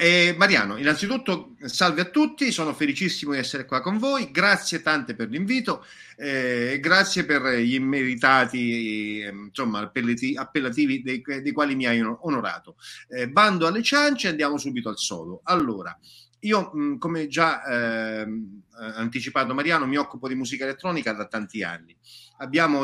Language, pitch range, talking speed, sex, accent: Italian, 120-185 Hz, 150 wpm, male, native